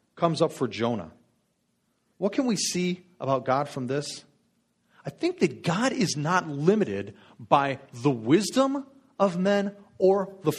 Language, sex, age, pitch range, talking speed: English, male, 40-59, 130-190 Hz, 145 wpm